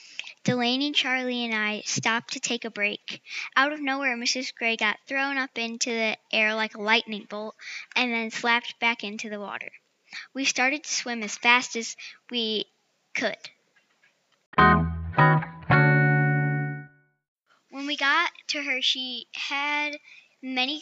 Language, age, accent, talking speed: English, 10-29, American, 140 wpm